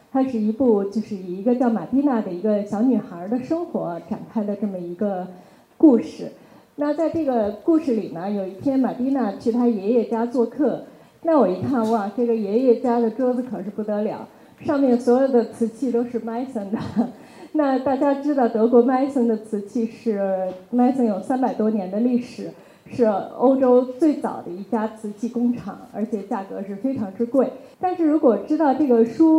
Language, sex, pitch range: Chinese, female, 215-260 Hz